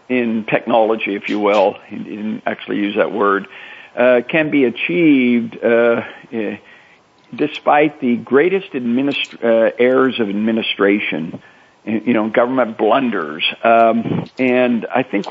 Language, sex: English, male